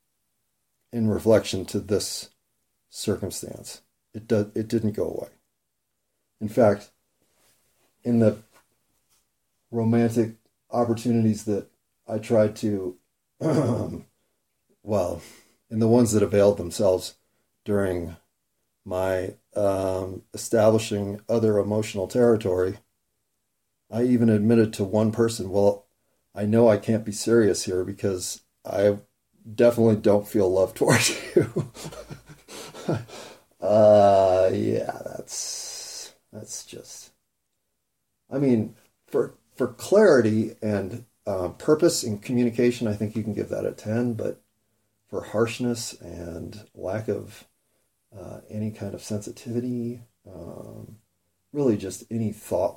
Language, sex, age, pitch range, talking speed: English, male, 40-59, 100-115 Hz, 110 wpm